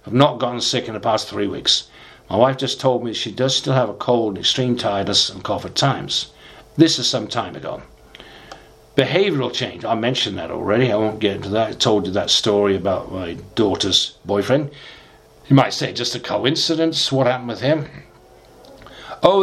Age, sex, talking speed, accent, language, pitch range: 50-69, male, 190 wpm, British, English, 115-150 Hz